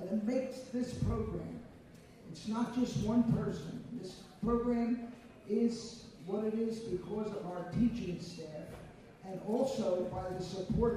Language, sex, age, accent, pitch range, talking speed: English, male, 50-69, American, 180-235 Hz, 135 wpm